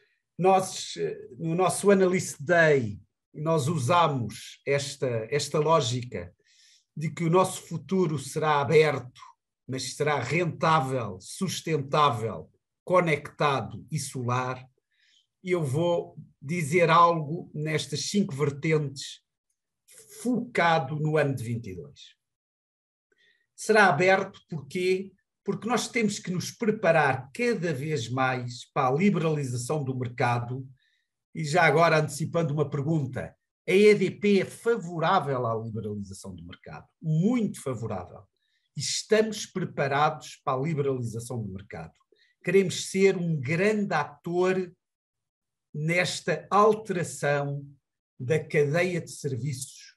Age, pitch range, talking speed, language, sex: 50-69, 135-180 Hz, 105 wpm, Portuguese, male